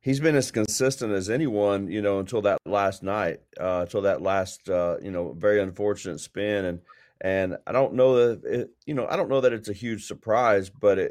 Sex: male